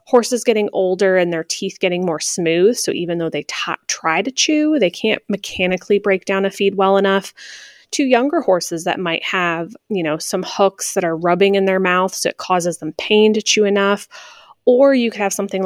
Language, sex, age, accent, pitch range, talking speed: English, female, 20-39, American, 170-215 Hz, 210 wpm